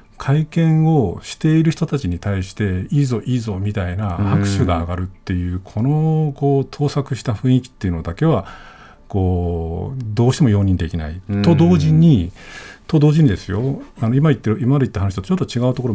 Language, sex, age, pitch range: Japanese, male, 50-69, 95-150 Hz